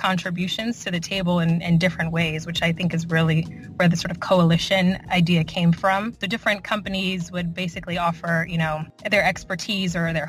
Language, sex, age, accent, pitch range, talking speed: English, female, 20-39, American, 165-190 Hz, 190 wpm